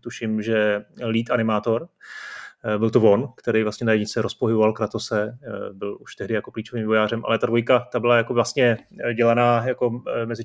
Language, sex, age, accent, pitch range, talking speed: Czech, male, 30-49, native, 110-125 Hz, 165 wpm